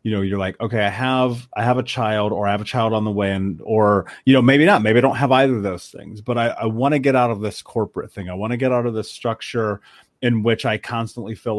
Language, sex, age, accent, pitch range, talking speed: English, male, 30-49, American, 105-130 Hz, 290 wpm